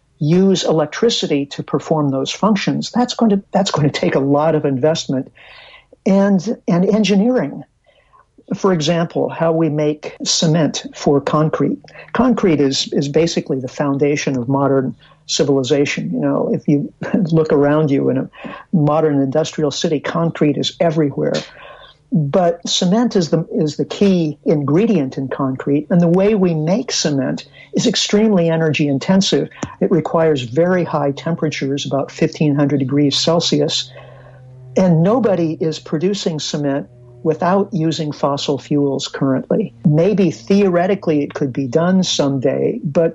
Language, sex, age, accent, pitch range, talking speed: English, male, 50-69, American, 145-185 Hz, 135 wpm